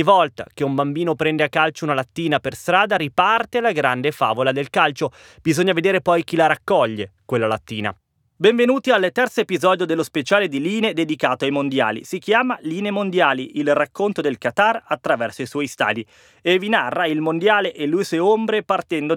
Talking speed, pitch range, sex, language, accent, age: 180 wpm, 135-185 Hz, male, Italian, native, 30-49